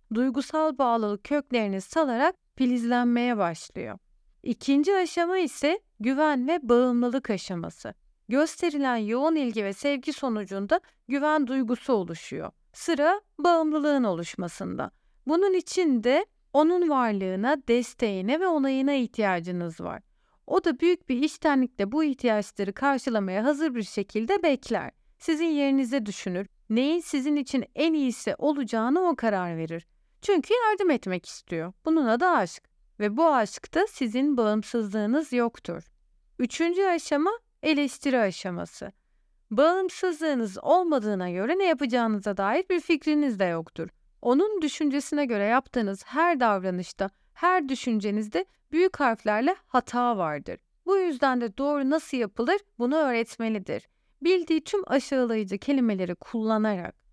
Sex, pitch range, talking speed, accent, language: female, 220-320 Hz, 115 wpm, native, Turkish